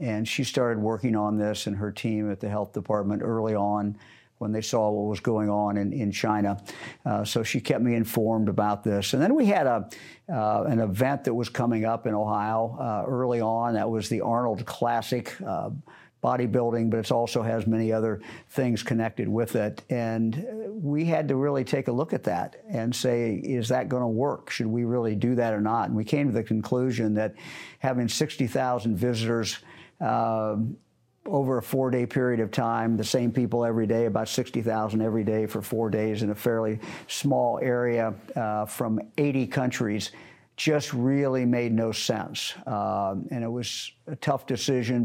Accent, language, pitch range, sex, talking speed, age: American, English, 110-125 Hz, male, 190 wpm, 50-69